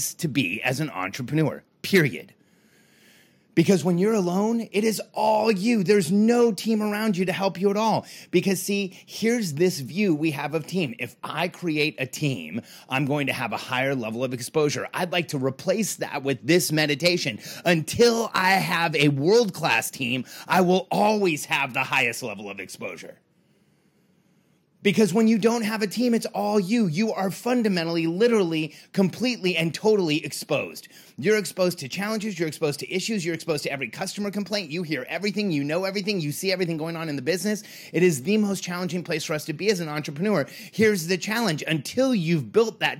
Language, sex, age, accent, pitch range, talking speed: English, male, 30-49, American, 155-205 Hz, 190 wpm